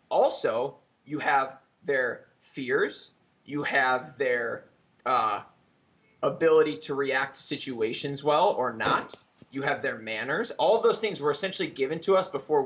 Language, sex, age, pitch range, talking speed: English, male, 20-39, 145-230 Hz, 145 wpm